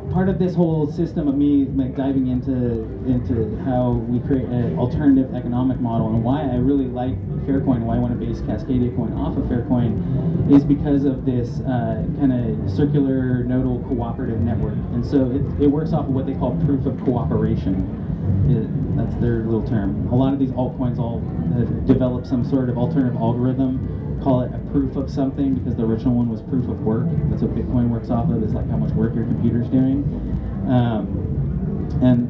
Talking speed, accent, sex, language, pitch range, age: 195 wpm, American, male, English, 115-140 Hz, 30-49